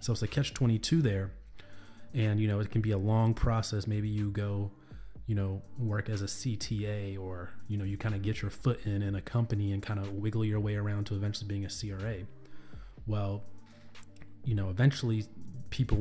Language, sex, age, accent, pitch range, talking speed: English, male, 30-49, American, 100-115 Hz, 200 wpm